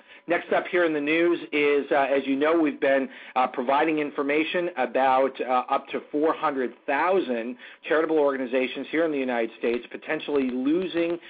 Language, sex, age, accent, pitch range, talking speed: English, male, 40-59, American, 125-145 Hz, 160 wpm